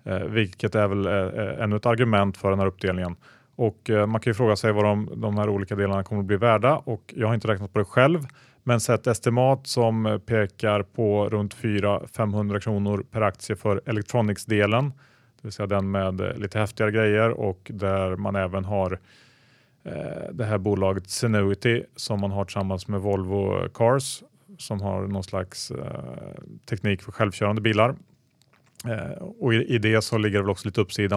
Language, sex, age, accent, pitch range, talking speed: Swedish, male, 30-49, Norwegian, 100-115 Hz, 170 wpm